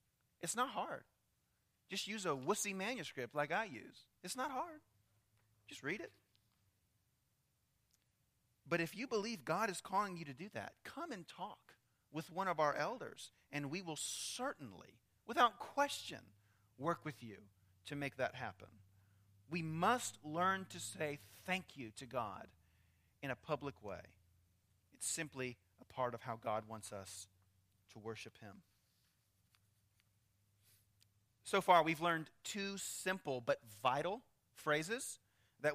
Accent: American